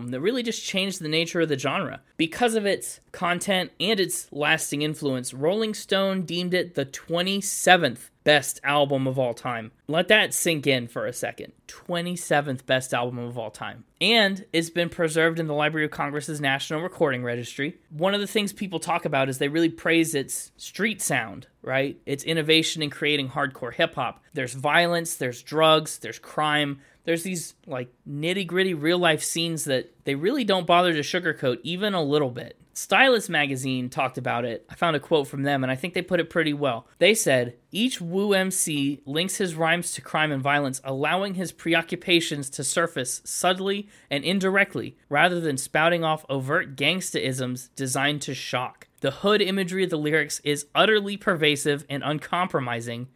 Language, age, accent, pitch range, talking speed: English, 20-39, American, 135-180 Hz, 175 wpm